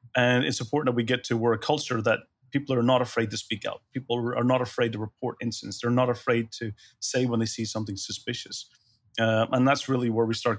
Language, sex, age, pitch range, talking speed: English, male, 30-49, 110-125 Hz, 240 wpm